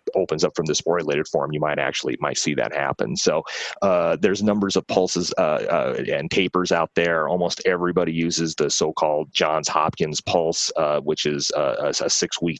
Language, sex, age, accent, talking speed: English, male, 30-49, American, 185 wpm